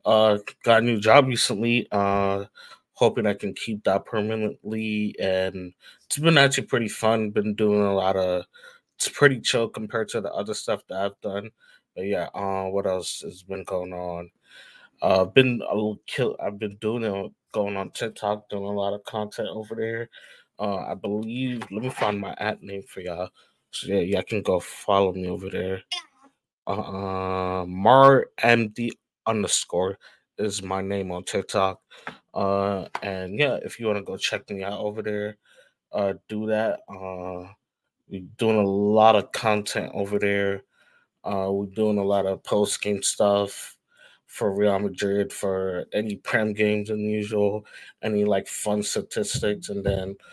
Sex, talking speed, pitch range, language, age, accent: male, 170 wpm, 95-110 Hz, English, 20-39, American